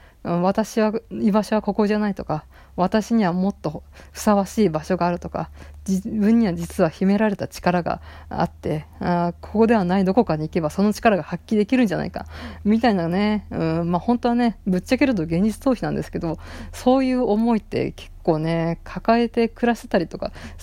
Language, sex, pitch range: Japanese, female, 170-220 Hz